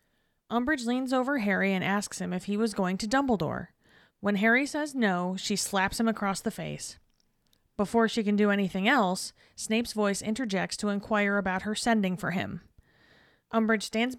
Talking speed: 175 wpm